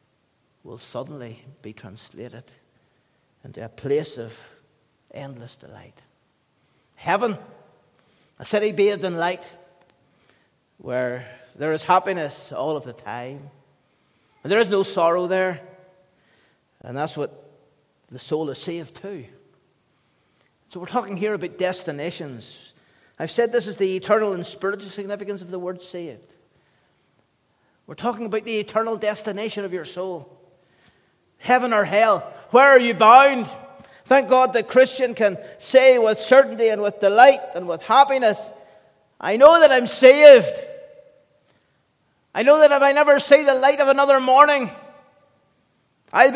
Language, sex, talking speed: English, male, 135 wpm